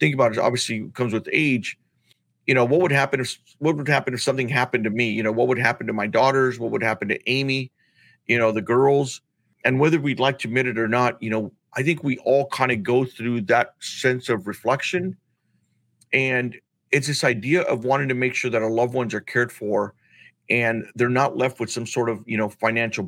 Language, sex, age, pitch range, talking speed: English, male, 40-59, 115-140 Hz, 230 wpm